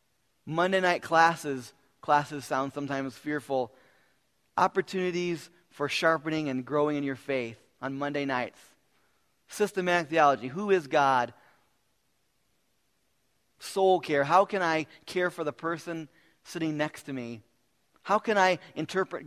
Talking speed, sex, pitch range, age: 125 wpm, male, 140-175 Hz, 30-49